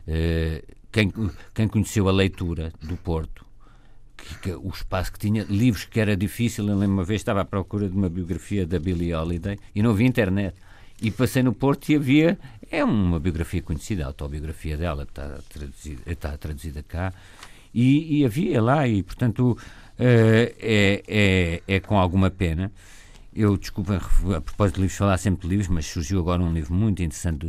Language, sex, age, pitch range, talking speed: Portuguese, male, 50-69, 80-105 Hz, 185 wpm